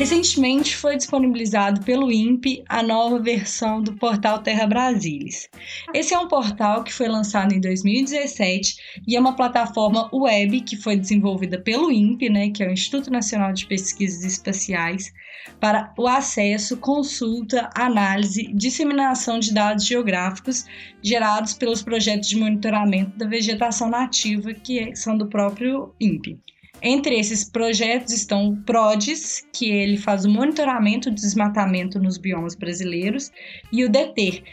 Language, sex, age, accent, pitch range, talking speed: Portuguese, female, 10-29, Brazilian, 205-250 Hz, 140 wpm